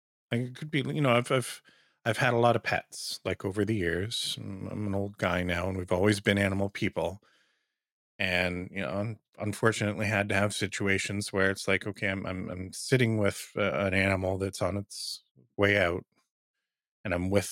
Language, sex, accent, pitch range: English, male, American, 90-110 Hz